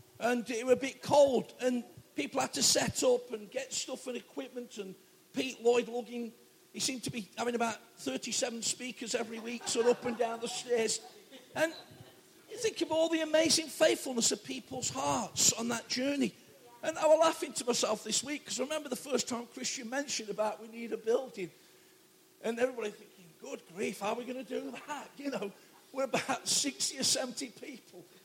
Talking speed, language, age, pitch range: 200 wpm, English, 50-69, 220-295 Hz